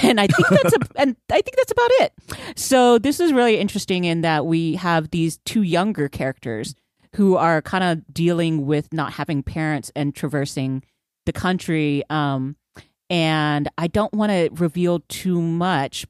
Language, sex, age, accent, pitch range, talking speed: English, female, 30-49, American, 150-185 Hz, 170 wpm